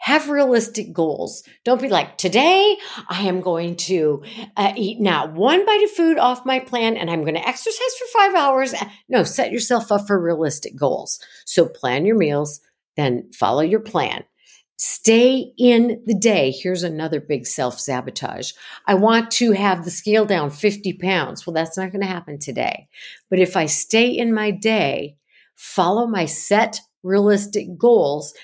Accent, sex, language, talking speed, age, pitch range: American, female, English, 170 wpm, 50-69, 160-235 Hz